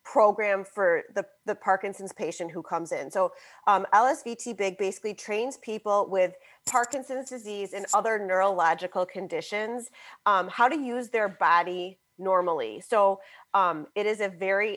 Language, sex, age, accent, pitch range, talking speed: English, female, 30-49, American, 185-235 Hz, 140 wpm